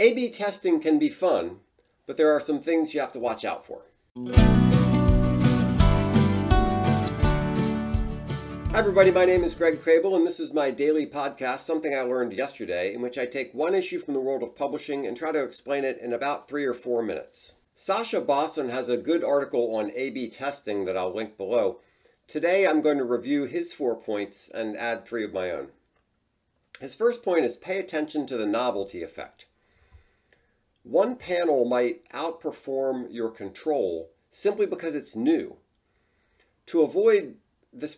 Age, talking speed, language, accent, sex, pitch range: 50-69, 165 wpm, English, American, male, 120-170 Hz